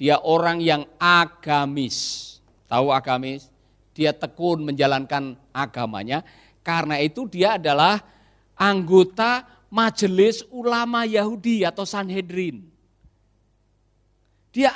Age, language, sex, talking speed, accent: 50-69, Indonesian, male, 85 wpm, native